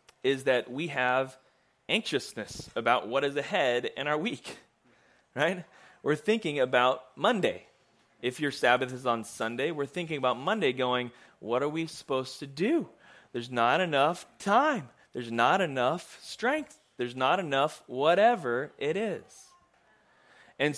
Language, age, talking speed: English, 30-49, 140 wpm